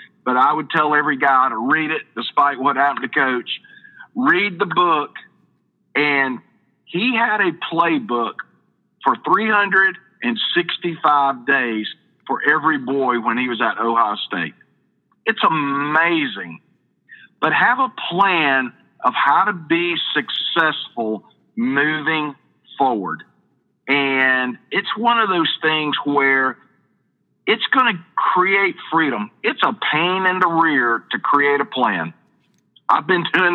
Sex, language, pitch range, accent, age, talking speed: male, English, 145-205 Hz, American, 50-69, 130 wpm